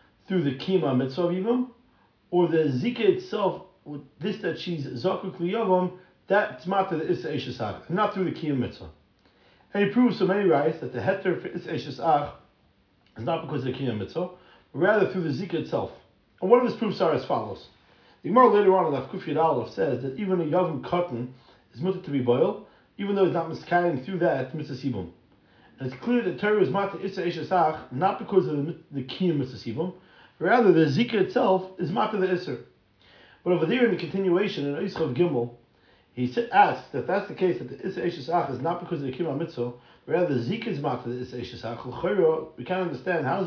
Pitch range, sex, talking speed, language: 135-185 Hz, male, 205 wpm, English